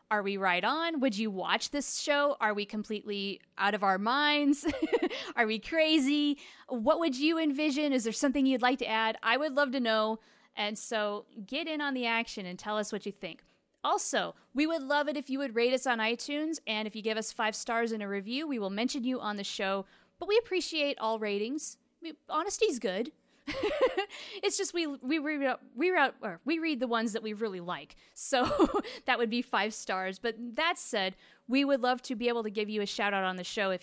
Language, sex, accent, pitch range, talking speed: English, female, American, 205-285 Hz, 220 wpm